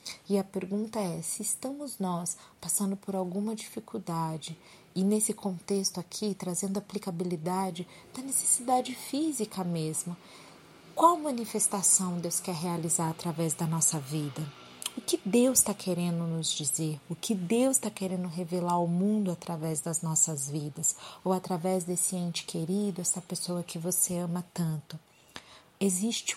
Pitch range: 170-205 Hz